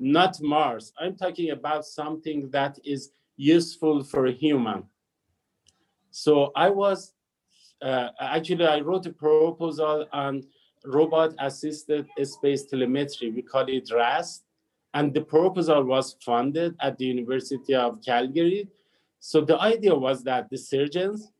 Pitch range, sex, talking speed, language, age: 135-170 Hz, male, 130 wpm, English, 50-69